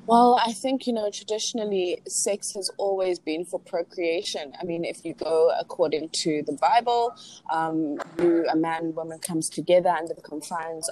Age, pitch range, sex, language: 20-39, 160-180 Hz, female, English